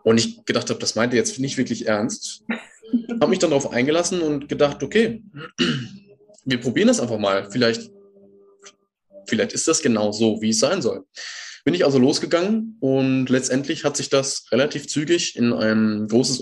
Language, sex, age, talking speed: German, male, 20-39, 170 wpm